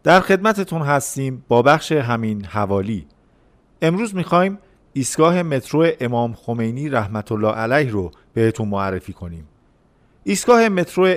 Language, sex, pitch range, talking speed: Persian, male, 115-160 Hz, 120 wpm